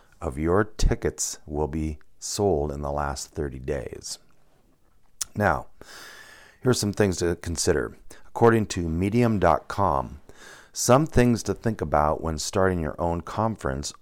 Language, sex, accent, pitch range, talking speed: English, male, American, 75-100 Hz, 130 wpm